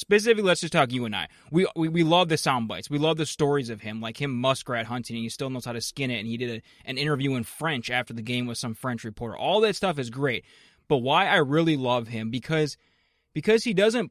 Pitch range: 125-170 Hz